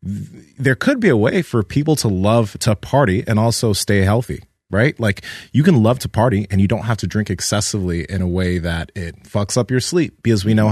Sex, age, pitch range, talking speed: male, 20-39, 95-115 Hz, 230 wpm